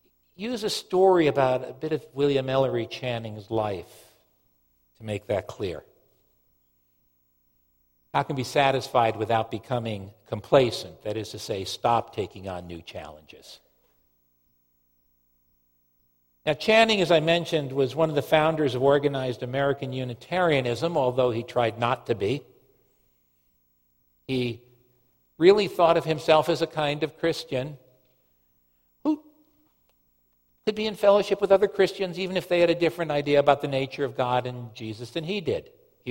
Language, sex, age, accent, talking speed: English, male, 60-79, American, 140 wpm